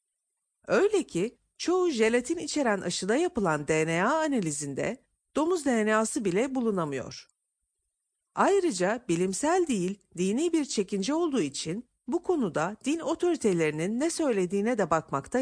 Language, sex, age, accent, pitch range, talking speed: Turkish, female, 50-69, native, 180-300 Hz, 115 wpm